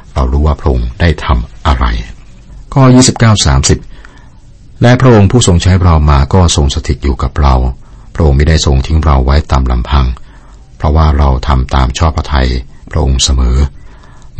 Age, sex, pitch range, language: 60-79, male, 65-80 Hz, Thai